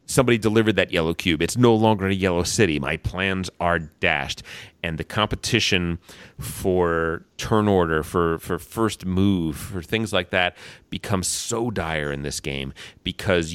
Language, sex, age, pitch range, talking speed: English, male, 30-49, 80-105 Hz, 160 wpm